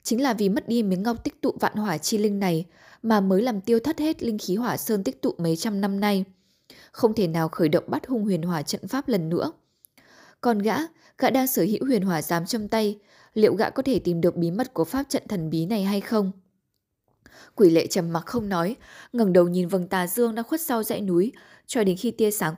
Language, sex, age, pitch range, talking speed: Vietnamese, female, 10-29, 180-235 Hz, 245 wpm